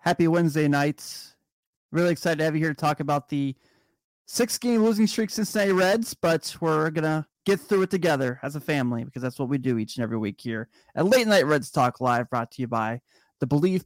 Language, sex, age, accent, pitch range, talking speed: English, male, 30-49, American, 140-185 Hz, 220 wpm